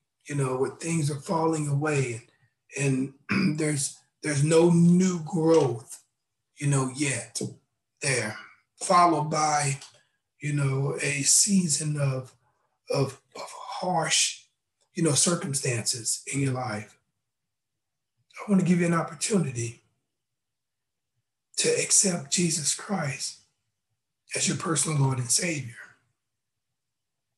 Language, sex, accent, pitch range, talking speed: English, male, American, 120-170 Hz, 110 wpm